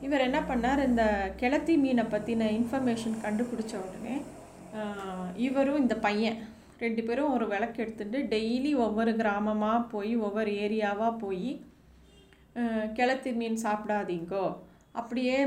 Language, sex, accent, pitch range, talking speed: Tamil, female, native, 210-250 Hz, 115 wpm